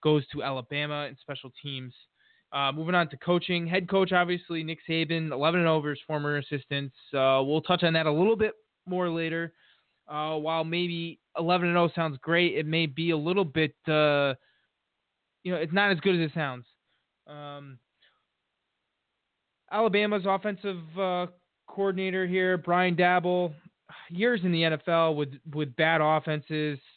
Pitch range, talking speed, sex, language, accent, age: 150-175 Hz, 160 wpm, male, English, American, 20-39